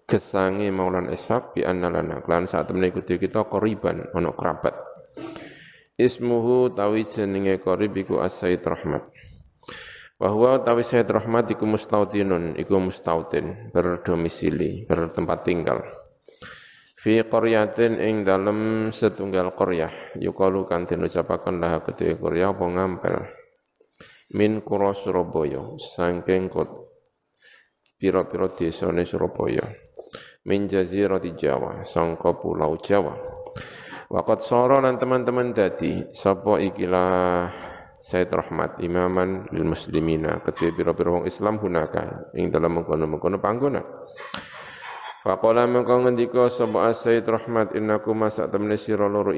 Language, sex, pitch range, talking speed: Indonesian, male, 90-115 Hz, 105 wpm